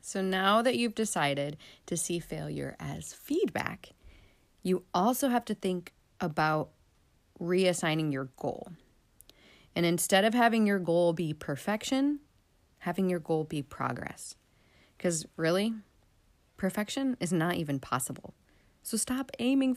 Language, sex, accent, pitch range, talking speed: English, female, American, 155-200 Hz, 130 wpm